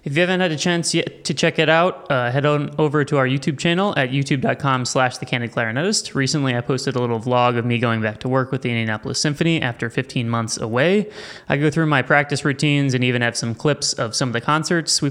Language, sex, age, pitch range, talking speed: English, male, 20-39, 125-150 Hz, 240 wpm